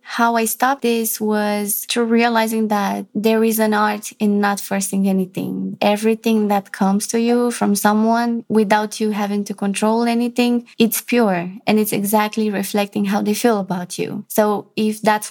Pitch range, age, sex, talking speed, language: 200-225 Hz, 20-39, female, 170 wpm, English